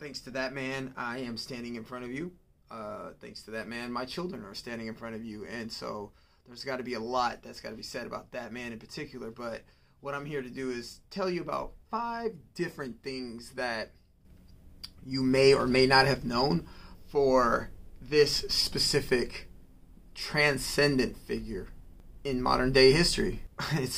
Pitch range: 115-135 Hz